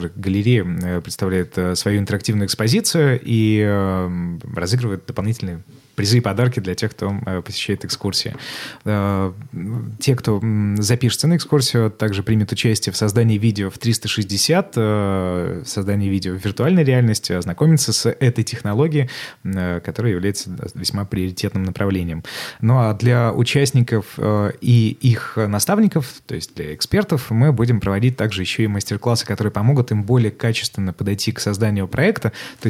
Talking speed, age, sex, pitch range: 130 wpm, 20-39, male, 100-120 Hz